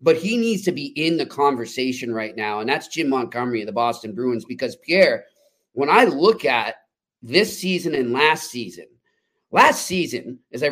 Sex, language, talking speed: male, English, 185 wpm